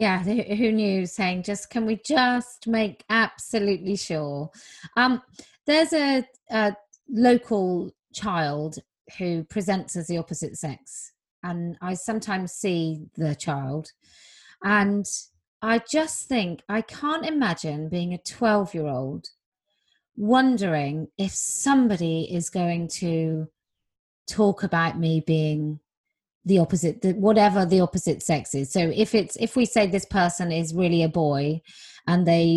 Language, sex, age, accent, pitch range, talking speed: English, female, 30-49, British, 170-225 Hz, 125 wpm